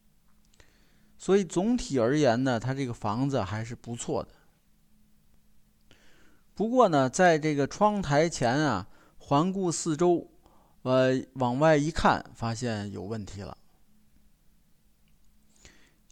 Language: Chinese